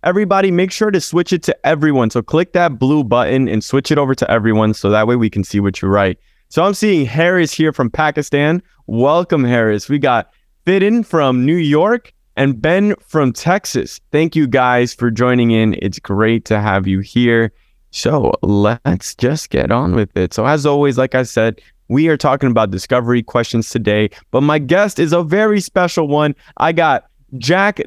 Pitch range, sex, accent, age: 110-155 Hz, male, American, 20-39